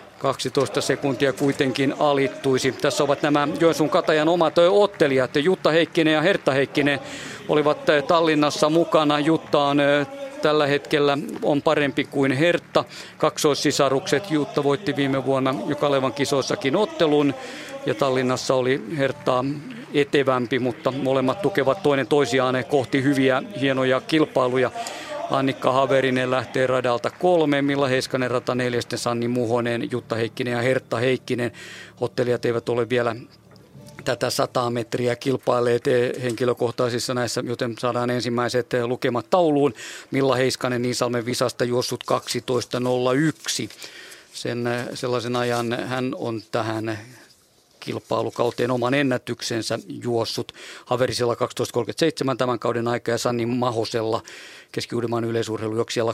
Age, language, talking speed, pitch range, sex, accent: 50-69, Finnish, 115 wpm, 120-145 Hz, male, native